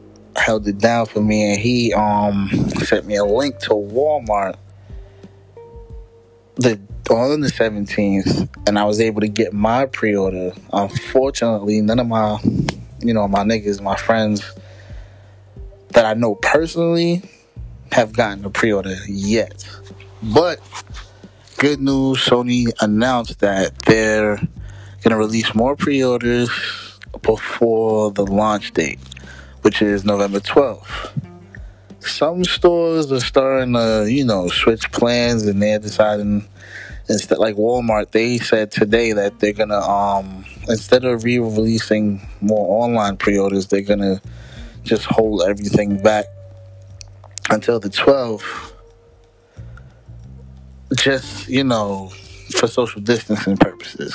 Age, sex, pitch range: 20-39, male, 100-115 Hz